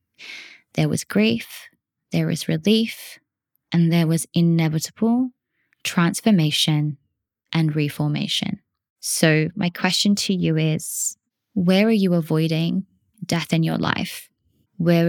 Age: 20-39